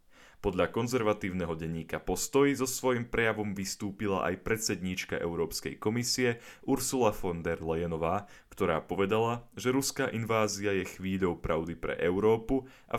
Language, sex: Slovak, male